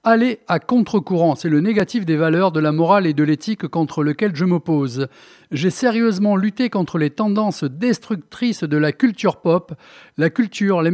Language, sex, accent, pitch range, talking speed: French, male, French, 175-230 Hz, 175 wpm